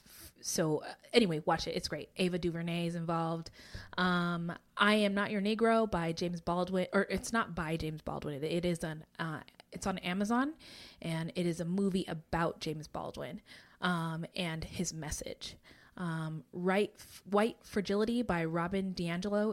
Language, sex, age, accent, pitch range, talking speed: English, female, 20-39, American, 160-200 Hz, 165 wpm